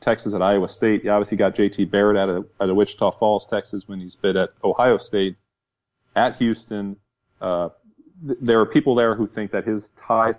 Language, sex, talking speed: English, male, 200 wpm